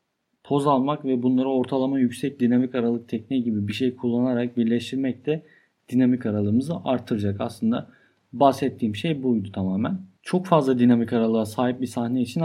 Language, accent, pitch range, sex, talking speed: Turkish, native, 120-160 Hz, male, 150 wpm